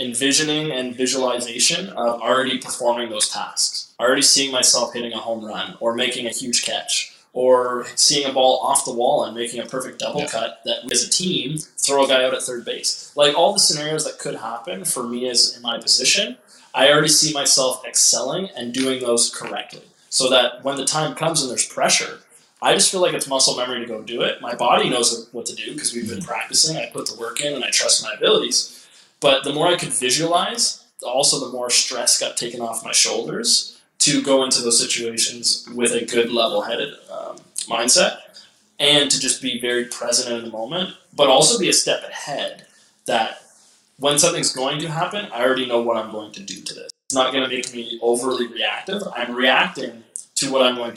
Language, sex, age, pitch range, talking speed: English, male, 20-39, 120-145 Hz, 205 wpm